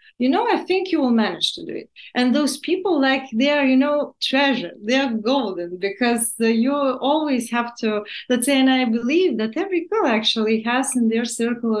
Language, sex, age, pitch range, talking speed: English, female, 30-49, 215-300 Hz, 210 wpm